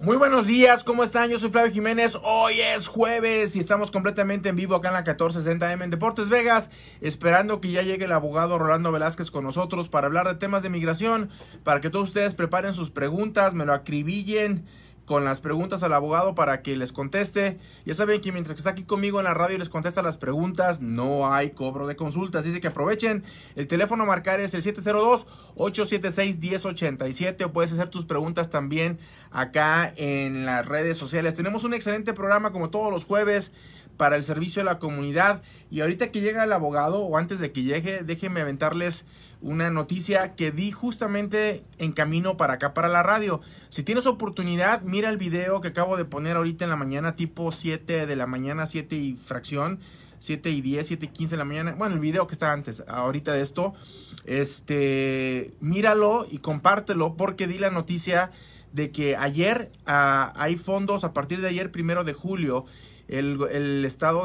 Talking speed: 190 wpm